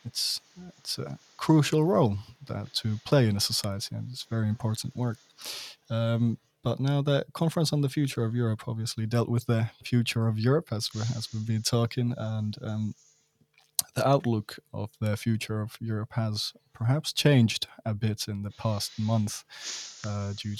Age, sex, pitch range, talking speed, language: 20-39, male, 105-125 Hz, 170 wpm, Finnish